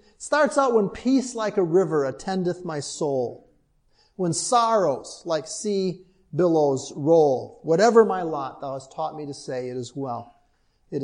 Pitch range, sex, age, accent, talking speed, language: 135-190 Hz, male, 40-59, American, 160 wpm, English